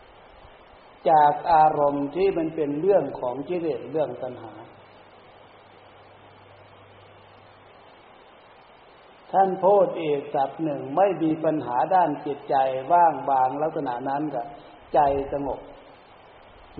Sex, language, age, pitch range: male, Thai, 60-79, 125-165 Hz